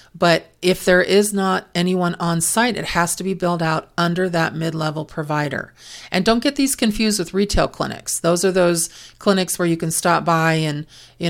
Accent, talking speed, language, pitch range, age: American, 195 wpm, English, 155-180 Hz, 40-59